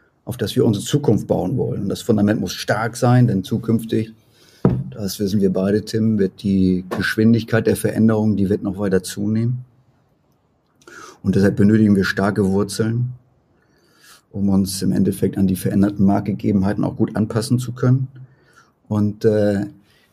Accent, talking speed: German, 150 wpm